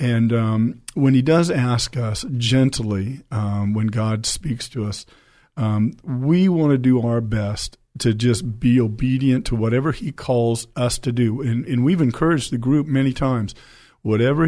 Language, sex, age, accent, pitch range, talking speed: English, male, 50-69, American, 115-145 Hz, 170 wpm